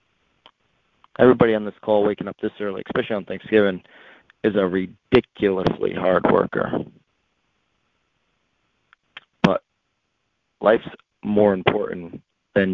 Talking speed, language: 100 wpm, English